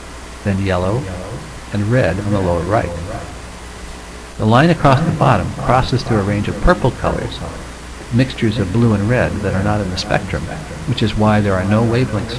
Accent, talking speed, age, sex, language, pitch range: American, 185 wpm, 60-79, male, English, 80-120 Hz